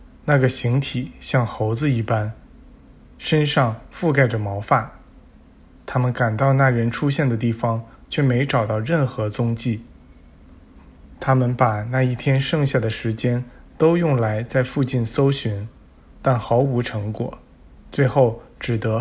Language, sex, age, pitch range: Chinese, male, 20-39, 115-135 Hz